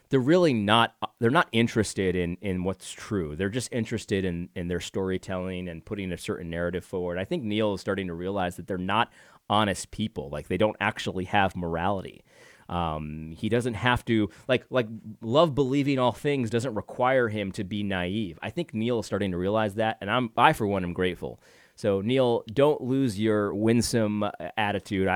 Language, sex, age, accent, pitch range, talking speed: English, male, 30-49, American, 100-125 Hz, 190 wpm